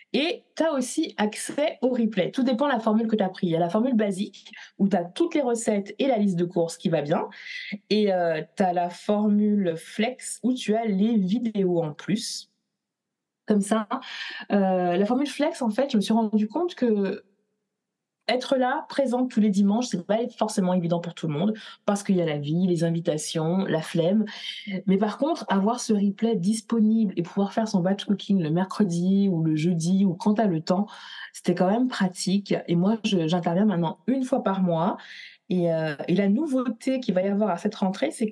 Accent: French